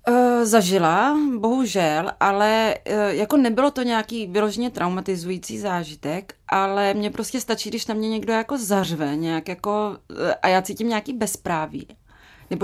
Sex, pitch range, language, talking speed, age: female, 190-230 Hz, Czech, 140 wpm, 30-49